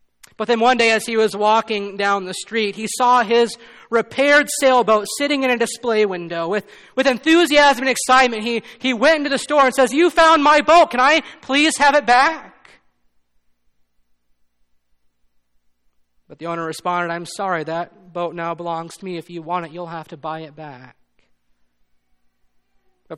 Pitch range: 150-225 Hz